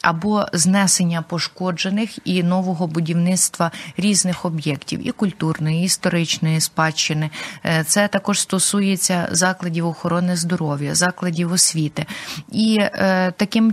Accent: native